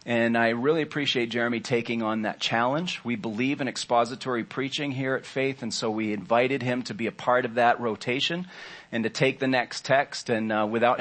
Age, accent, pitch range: 40-59, American, 115-145 Hz